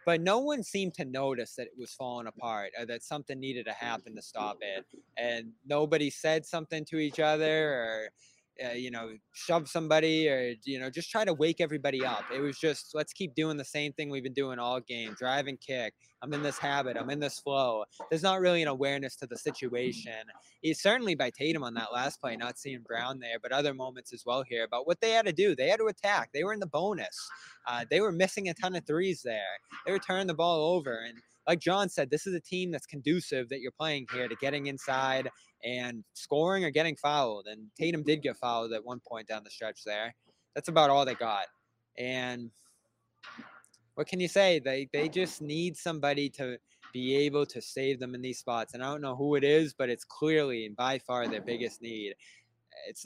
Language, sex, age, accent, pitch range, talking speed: English, male, 20-39, American, 125-160 Hz, 225 wpm